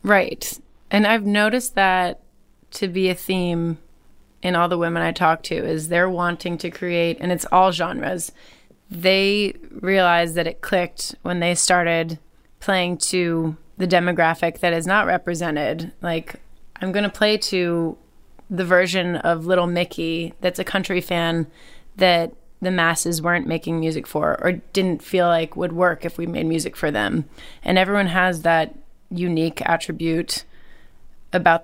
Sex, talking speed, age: female, 155 wpm, 20-39